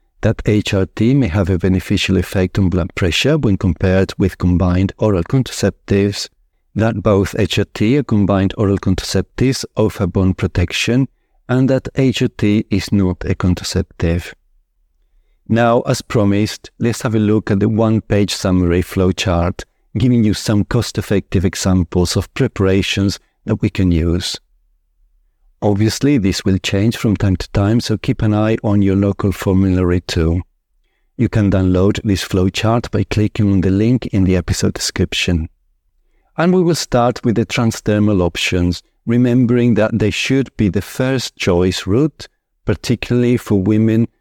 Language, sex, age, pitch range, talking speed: English, male, 50-69, 95-110 Hz, 150 wpm